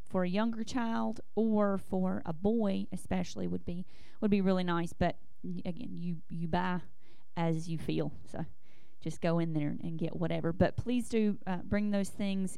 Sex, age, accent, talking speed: female, 30-49, American, 180 wpm